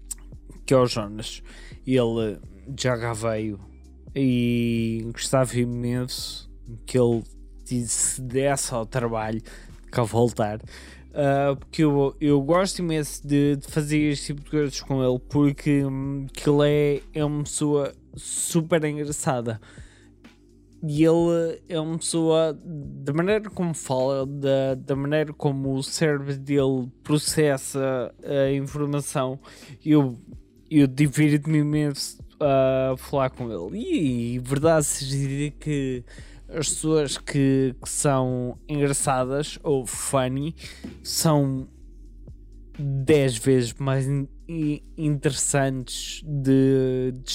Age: 20-39